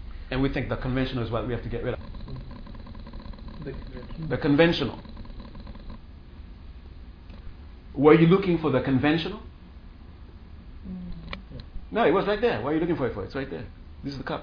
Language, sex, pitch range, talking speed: English, male, 80-130 Hz, 170 wpm